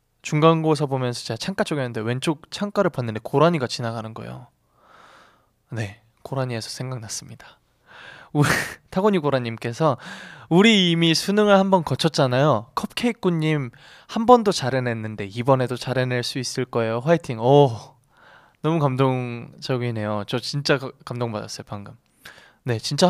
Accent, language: native, Korean